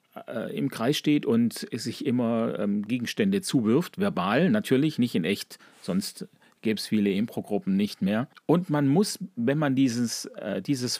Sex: male